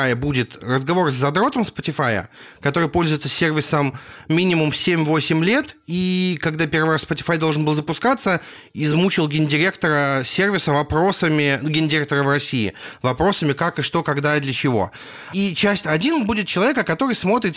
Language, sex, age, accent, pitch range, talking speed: Russian, male, 30-49, native, 145-200 Hz, 140 wpm